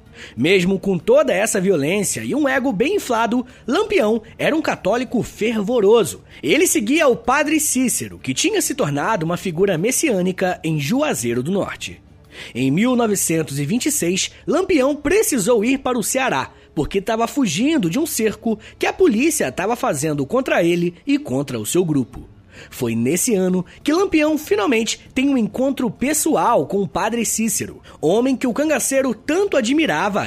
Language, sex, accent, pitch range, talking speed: Portuguese, male, Brazilian, 175-290 Hz, 155 wpm